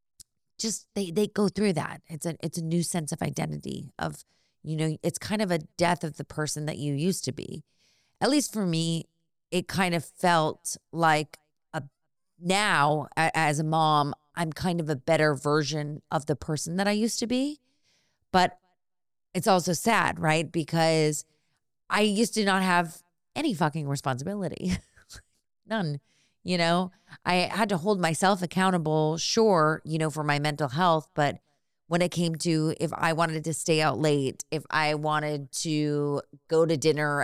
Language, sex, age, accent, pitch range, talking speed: English, female, 30-49, American, 150-185 Hz, 170 wpm